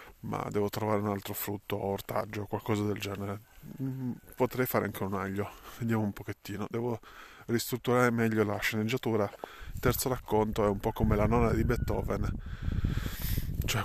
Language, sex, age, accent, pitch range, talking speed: Italian, male, 20-39, native, 95-115 Hz, 160 wpm